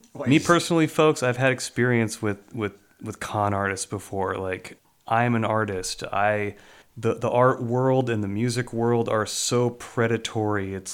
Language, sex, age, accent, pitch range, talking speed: English, male, 30-49, American, 100-125 Hz, 160 wpm